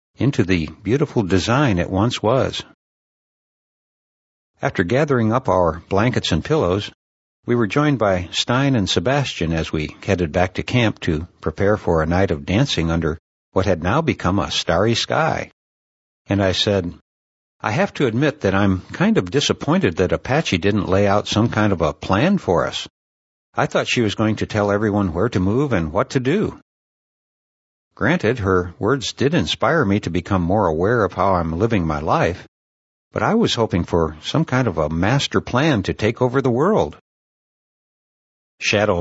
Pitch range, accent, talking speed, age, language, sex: 85-120 Hz, American, 175 wpm, 60-79, English, male